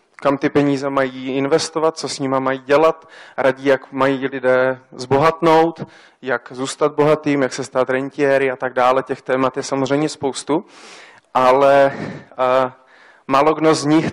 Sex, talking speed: male, 155 wpm